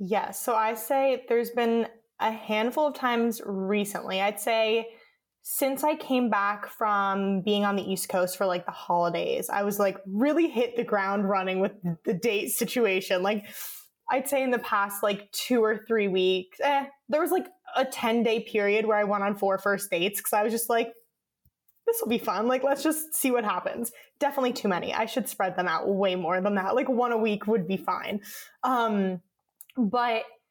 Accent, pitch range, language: American, 200-245 Hz, English